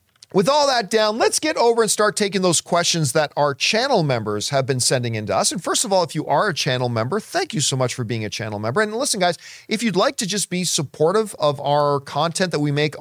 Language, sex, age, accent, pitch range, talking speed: English, male, 40-59, American, 140-215 Hz, 265 wpm